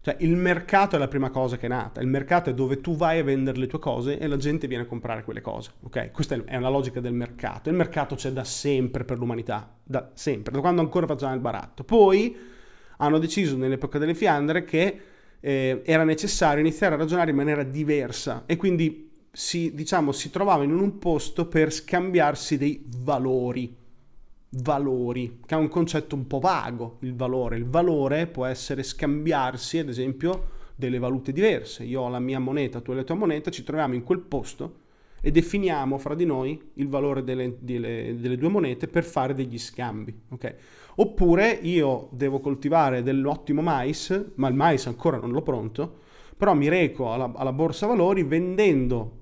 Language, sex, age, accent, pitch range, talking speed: Italian, male, 30-49, native, 130-165 Hz, 185 wpm